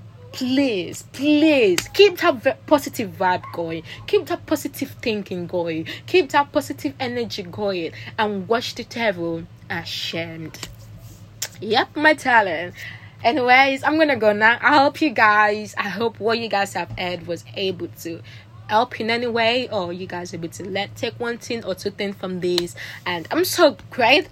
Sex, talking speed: female, 170 wpm